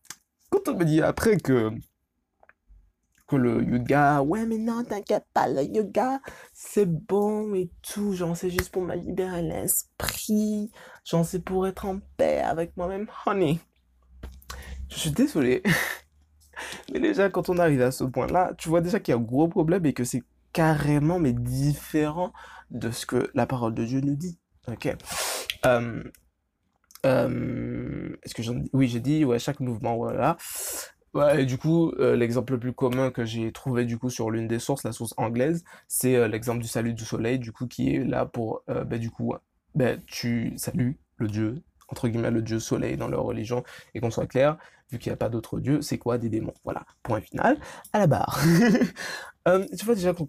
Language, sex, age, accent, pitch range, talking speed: French, male, 20-39, French, 120-175 Hz, 195 wpm